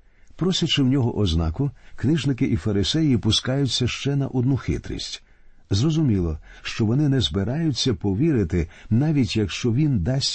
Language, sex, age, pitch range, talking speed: Ukrainian, male, 50-69, 95-130 Hz, 130 wpm